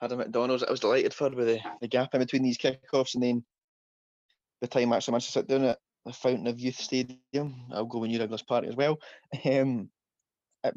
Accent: British